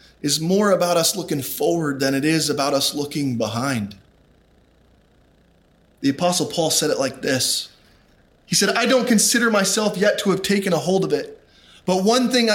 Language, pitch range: English, 180-225 Hz